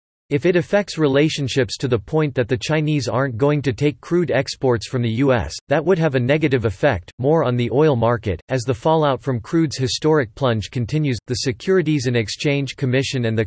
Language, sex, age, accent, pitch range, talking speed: English, male, 40-59, American, 120-150 Hz, 200 wpm